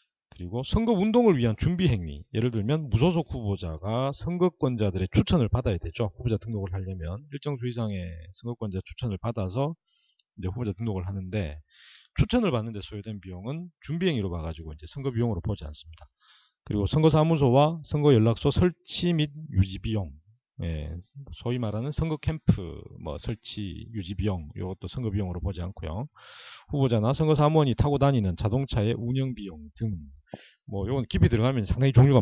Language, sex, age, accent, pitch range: Korean, male, 40-59, native, 95-140 Hz